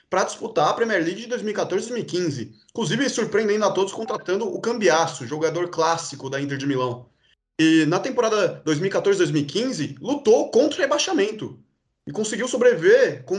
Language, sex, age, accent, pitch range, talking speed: Portuguese, male, 20-39, Brazilian, 150-200 Hz, 155 wpm